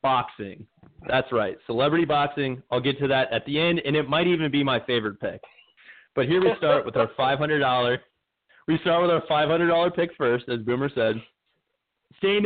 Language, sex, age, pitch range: English, male, 20-39, 120-155 Hz